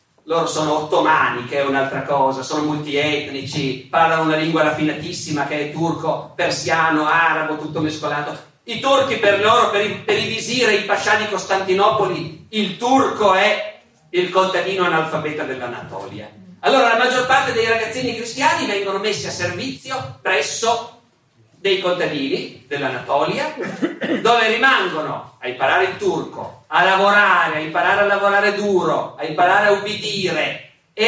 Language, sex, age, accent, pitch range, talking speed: Italian, male, 40-59, native, 155-215 Hz, 135 wpm